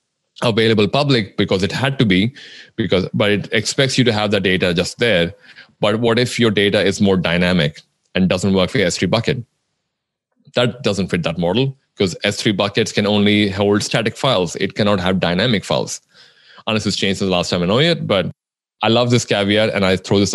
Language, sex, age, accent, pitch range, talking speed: English, male, 20-39, Indian, 100-130 Hz, 205 wpm